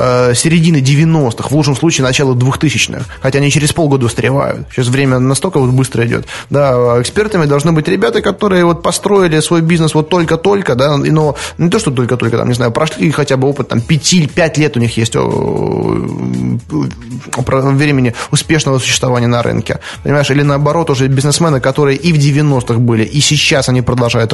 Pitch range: 120-150 Hz